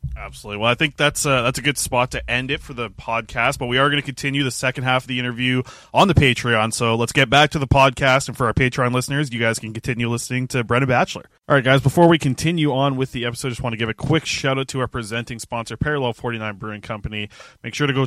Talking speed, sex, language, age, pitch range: 270 wpm, male, English, 20-39, 120-140 Hz